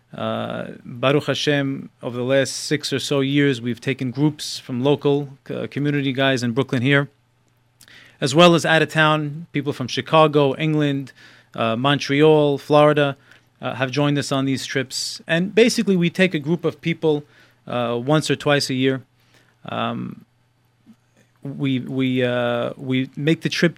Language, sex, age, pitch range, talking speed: English, male, 30-49, 130-155 Hz, 160 wpm